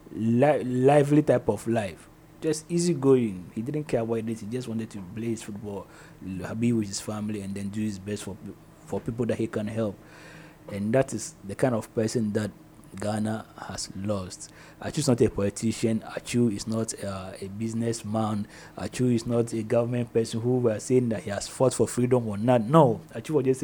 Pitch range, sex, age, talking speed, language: 110-155 Hz, male, 30-49, 205 wpm, English